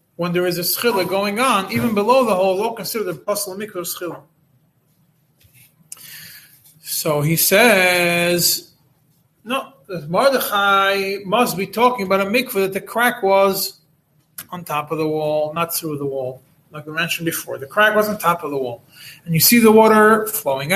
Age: 30-49